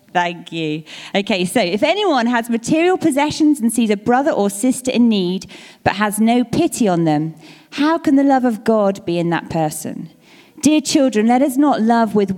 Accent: British